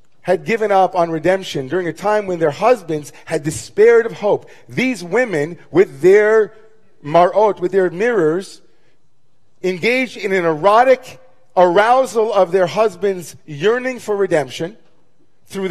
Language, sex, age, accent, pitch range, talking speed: English, male, 40-59, American, 165-235 Hz, 135 wpm